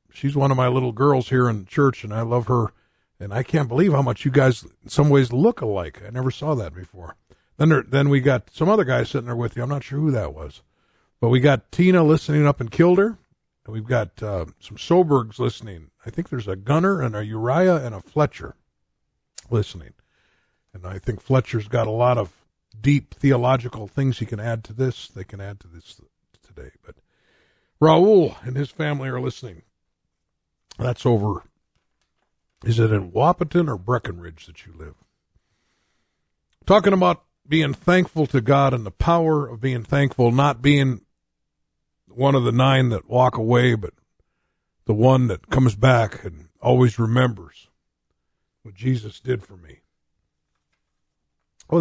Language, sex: English, male